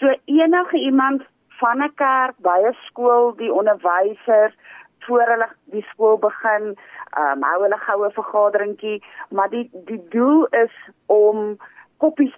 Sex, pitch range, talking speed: female, 195-265 Hz, 130 wpm